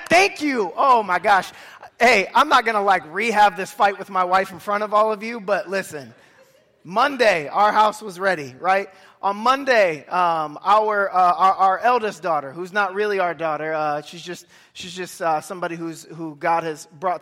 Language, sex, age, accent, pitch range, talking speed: English, male, 20-39, American, 180-265 Hz, 200 wpm